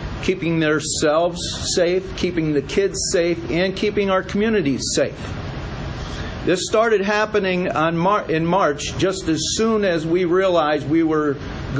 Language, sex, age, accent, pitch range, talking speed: English, male, 50-69, American, 150-195 Hz, 135 wpm